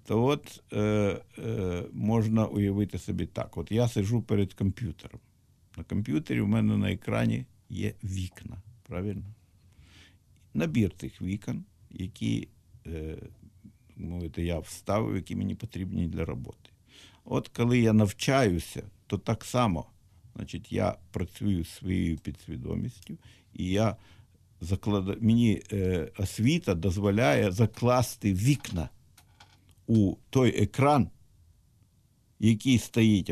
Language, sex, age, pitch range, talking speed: Ukrainian, male, 50-69, 90-110 Hz, 110 wpm